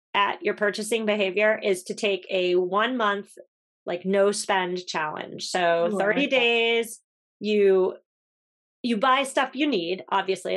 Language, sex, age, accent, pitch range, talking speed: English, female, 30-49, American, 180-235 Hz, 135 wpm